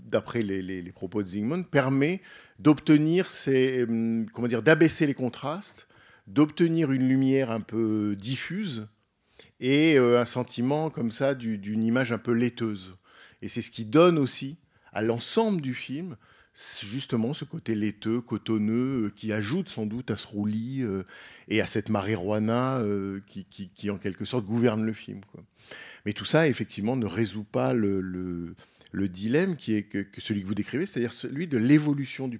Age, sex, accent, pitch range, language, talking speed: 50-69, male, French, 105-130 Hz, French, 180 wpm